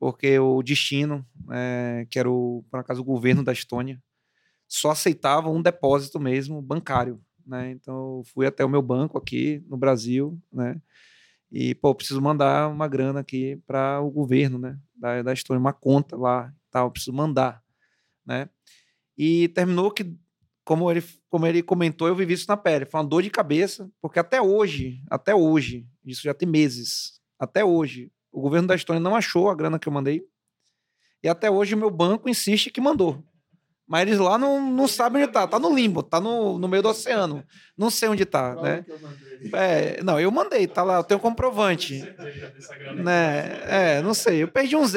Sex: male